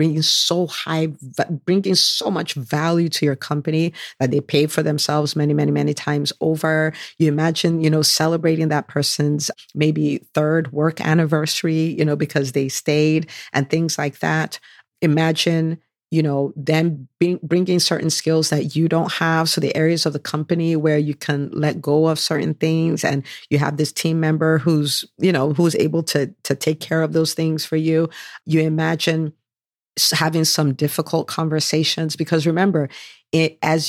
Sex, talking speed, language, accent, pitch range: female, 165 wpm, English, American, 150-165 Hz